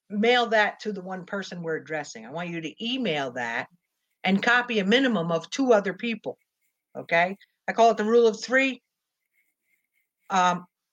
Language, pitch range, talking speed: English, 170-225 Hz, 170 wpm